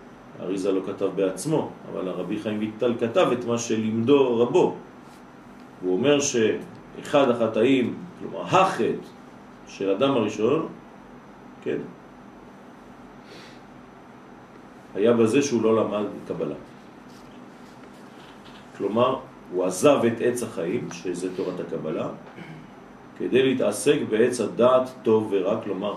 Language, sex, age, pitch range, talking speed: French, male, 50-69, 100-120 Hz, 105 wpm